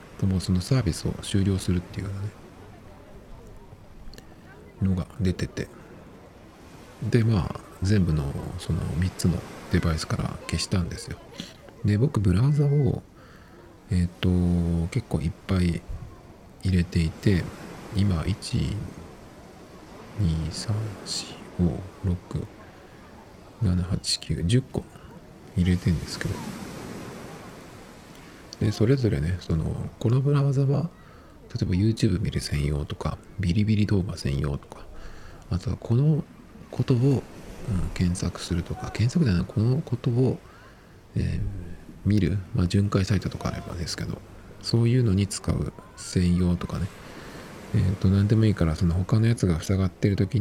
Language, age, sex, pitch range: Japanese, 50-69, male, 90-110 Hz